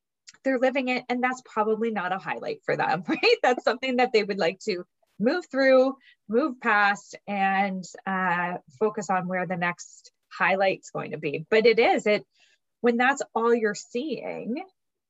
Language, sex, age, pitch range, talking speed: English, female, 20-39, 185-230 Hz, 170 wpm